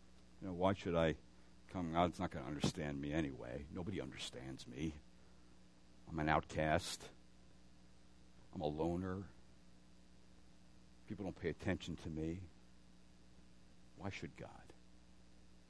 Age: 60-79